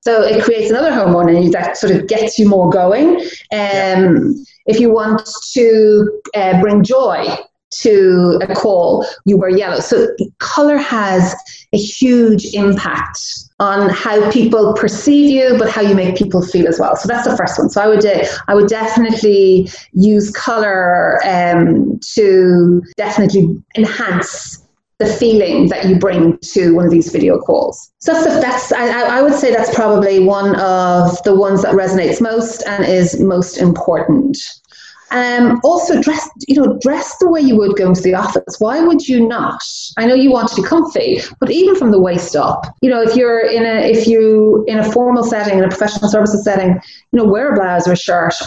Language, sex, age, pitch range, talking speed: English, female, 30-49, 190-240 Hz, 190 wpm